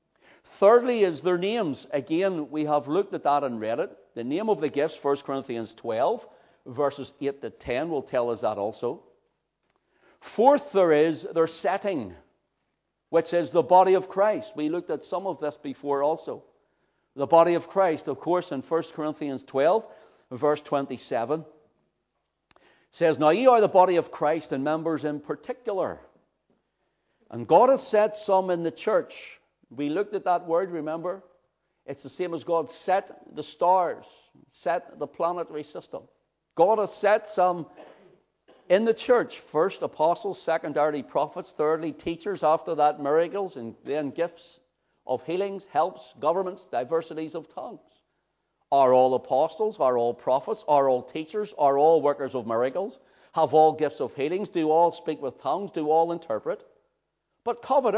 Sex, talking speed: male, 160 wpm